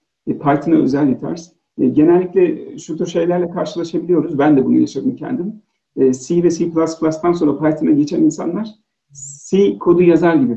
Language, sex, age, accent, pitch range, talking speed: Turkish, male, 50-69, native, 145-210 Hz, 140 wpm